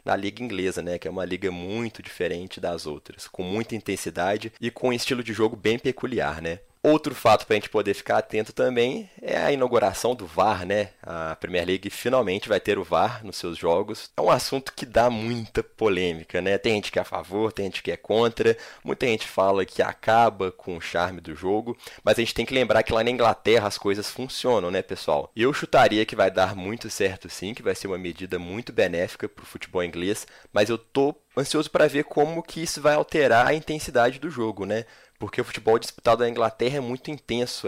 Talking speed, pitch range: 220 wpm, 95-125 Hz